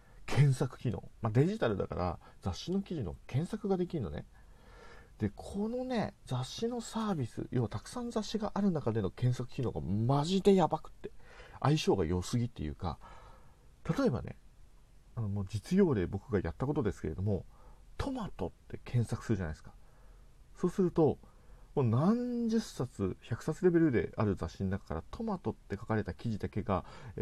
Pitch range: 100-155 Hz